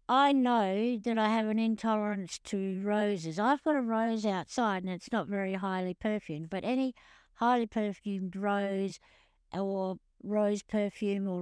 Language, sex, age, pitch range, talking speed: English, female, 60-79, 190-235 Hz, 150 wpm